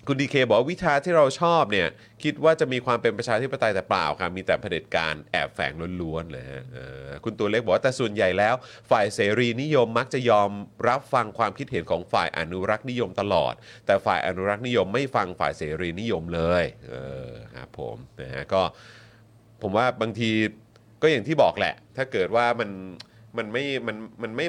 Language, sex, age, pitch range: Thai, male, 30-49, 95-125 Hz